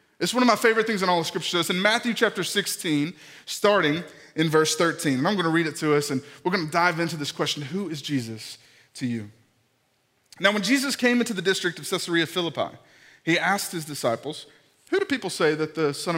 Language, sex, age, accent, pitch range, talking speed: English, male, 20-39, American, 125-170 Hz, 225 wpm